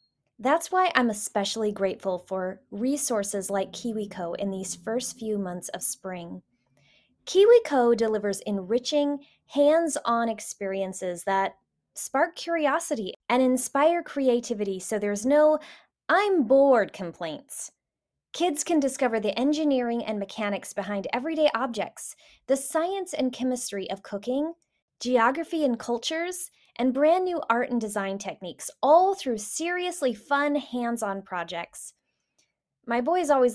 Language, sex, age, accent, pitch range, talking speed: English, female, 20-39, American, 195-280 Hz, 120 wpm